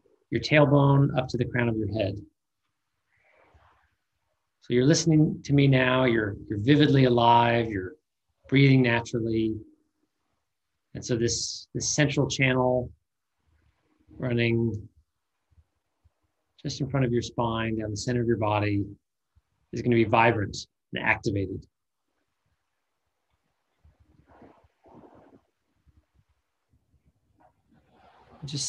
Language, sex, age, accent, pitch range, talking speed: English, male, 30-49, American, 100-125 Hz, 100 wpm